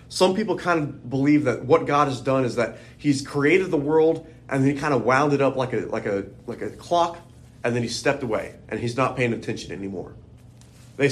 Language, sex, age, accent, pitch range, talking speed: English, male, 30-49, American, 120-155 Hz, 230 wpm